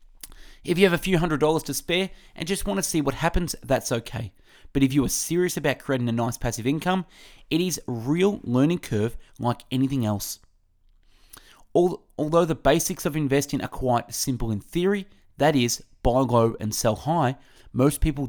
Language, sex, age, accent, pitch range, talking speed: English, male, 30-49, Australian, 115-165 Hz, 185 wpm